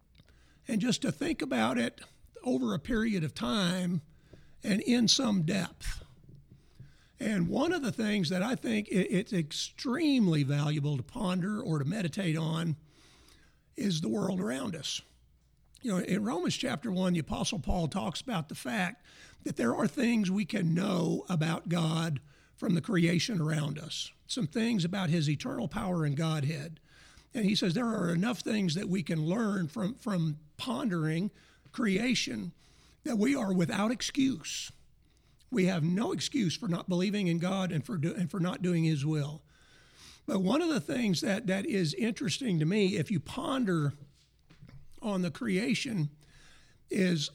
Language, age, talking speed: English, 50-69, 160 wpm